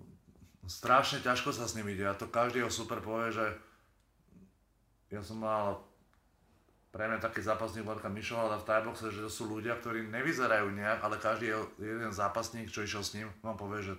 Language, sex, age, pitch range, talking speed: Slovak, male, 30-49, 95-110 Hz, 180 wpm